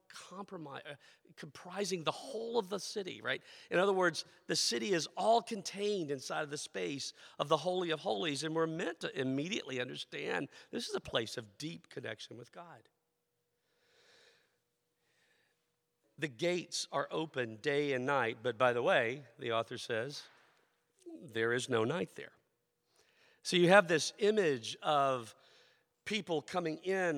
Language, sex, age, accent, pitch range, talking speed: English, male, 50-69, American, 140-185 Hz, 150 wpm